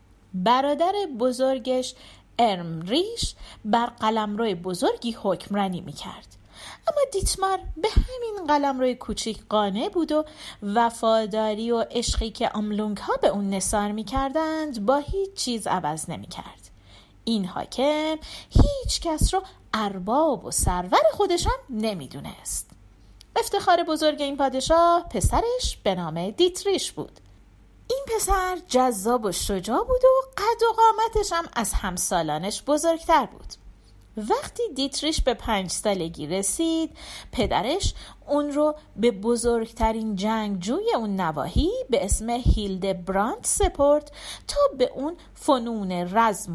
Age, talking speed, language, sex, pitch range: 40-59, 120 wpm, Persian, female, 205-320 Hz